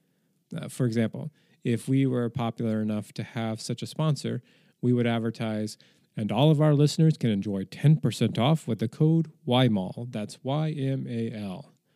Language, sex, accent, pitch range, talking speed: English, male, American, 115-155 Hz, 155 wpm